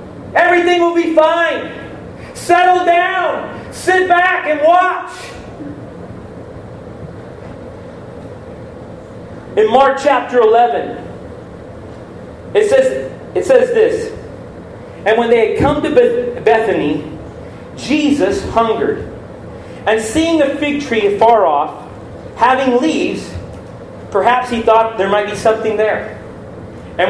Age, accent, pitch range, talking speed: 40-59, American, 225-360 Hz, 100 wpm